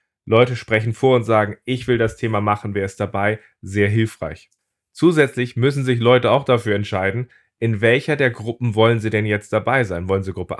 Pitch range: 105-125 Hz